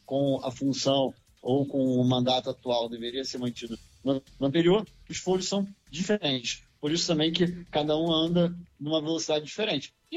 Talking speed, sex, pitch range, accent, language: 165 wpm, male, 140-185 Hz, Brazilian, Portuguese